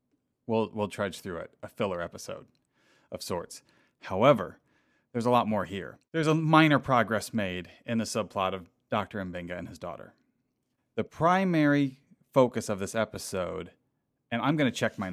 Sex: male